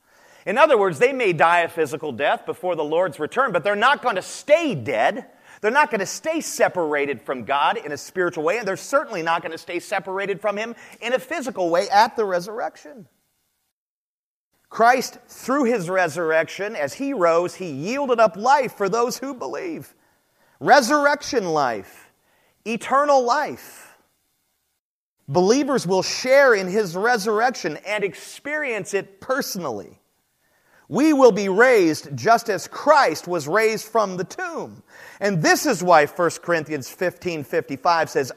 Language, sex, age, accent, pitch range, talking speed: English, male, 30-49, American, 170-245 Hz, 155 wpm